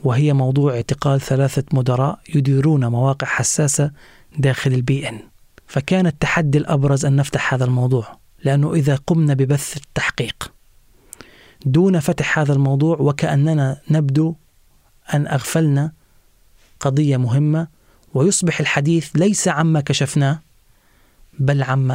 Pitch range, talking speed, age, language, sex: 135-155 Hz, 105 wpm, 30-49, Arabic, male